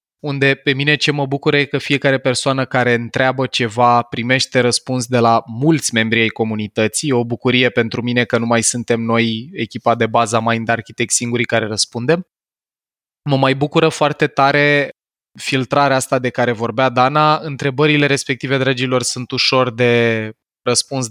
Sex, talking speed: male, 165 wpm